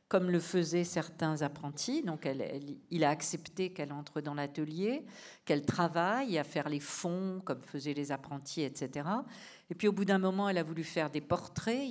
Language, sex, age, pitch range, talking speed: French, female, 50-69, 150-195 Hz, 190 wpm